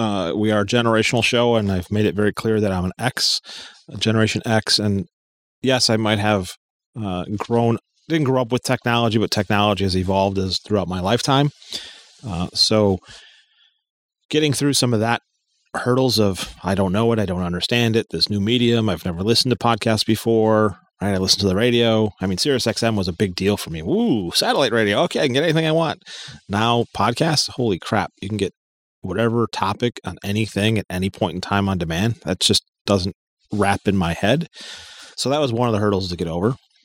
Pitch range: 95-115 Hz